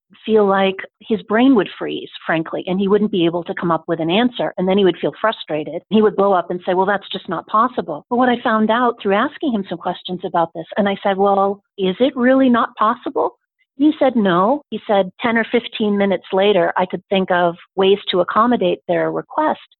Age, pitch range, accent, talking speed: 40-59, 180-220 Hz, American, 225 wpm